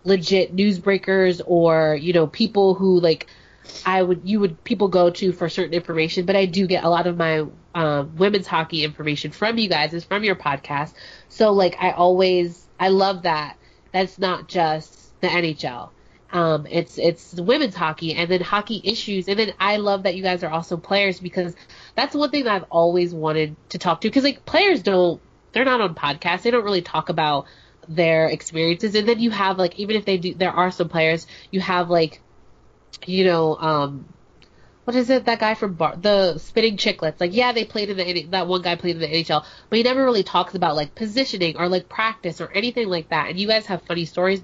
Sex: female